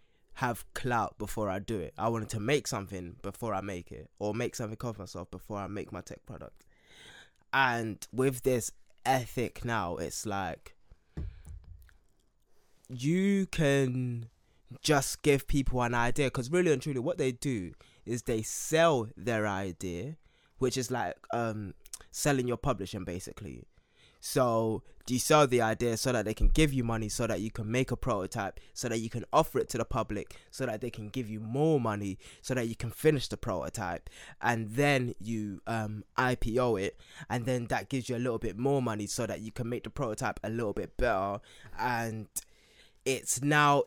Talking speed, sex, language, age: 180 wpm, male, English, 20-39